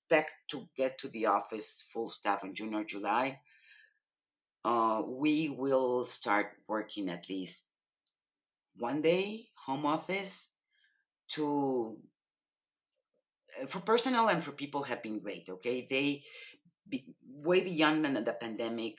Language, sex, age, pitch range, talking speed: English, female, 40-59, 115-155 Hz, 120 wpm